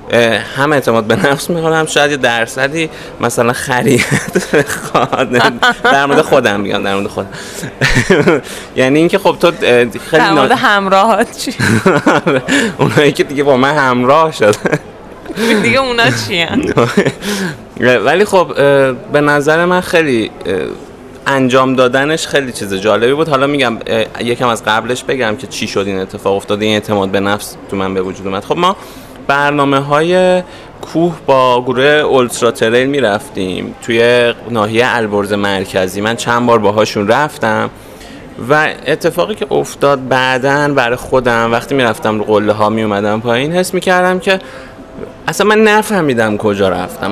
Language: Persian